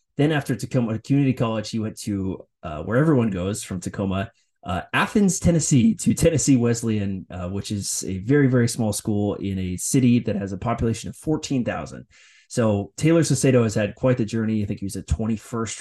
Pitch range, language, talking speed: 100-125 Hz, English, 195 wpm